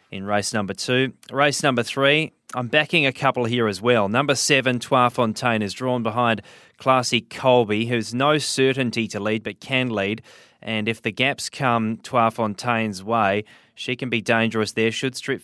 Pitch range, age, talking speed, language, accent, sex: 110-125 Hz, 20-39, 180 wpm, English, Australian, male